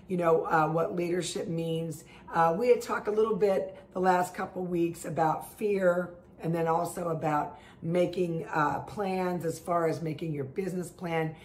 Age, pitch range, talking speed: 50-69, 155-180 Hz, 175 wpm